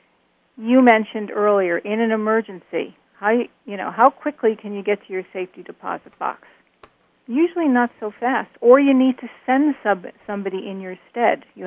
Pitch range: 195-240 Hz